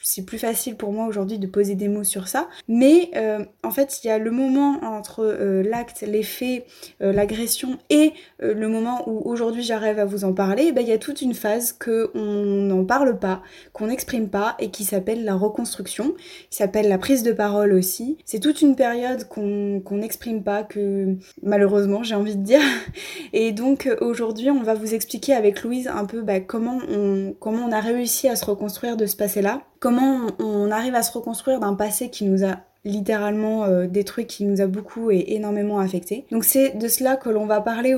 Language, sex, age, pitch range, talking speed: French, female, 20-39, 205-250 Hz, 210 wpm